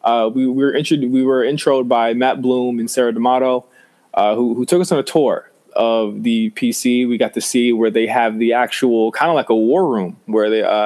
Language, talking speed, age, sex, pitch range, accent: English, 225 wpm, 20-39, male, 115-145 Hz, American